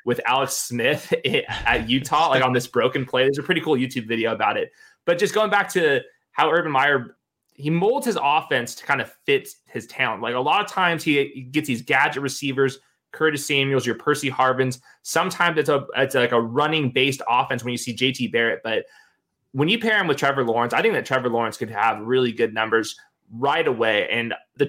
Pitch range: 120-150 Hz